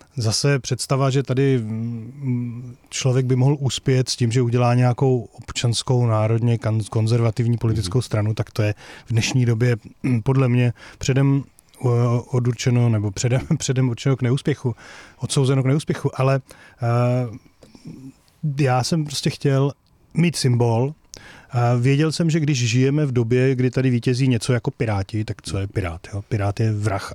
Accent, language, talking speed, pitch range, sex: native, Czech, 140 wpm, 110-130 Hz, male